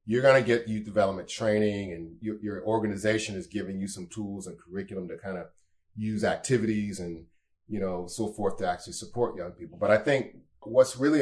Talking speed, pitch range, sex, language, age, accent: 205 wpm, 100-125 Hz, male, English, 30-49, American